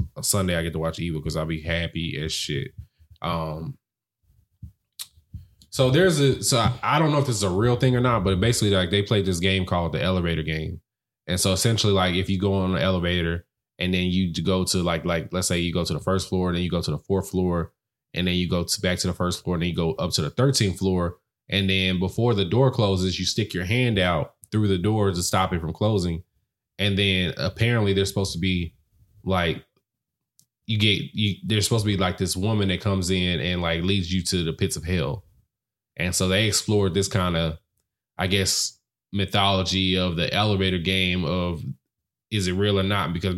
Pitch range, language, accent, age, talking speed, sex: 90-105 Hz, English, American, 20-39, 225 wpm, male